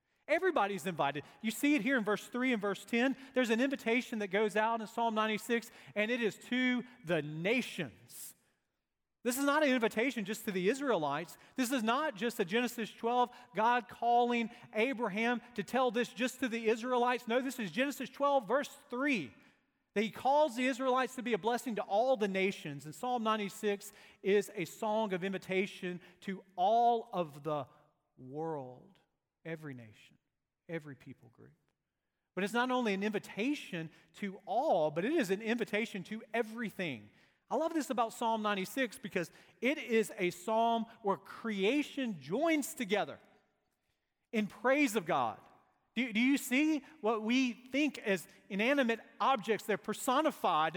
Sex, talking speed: male, 160 wpm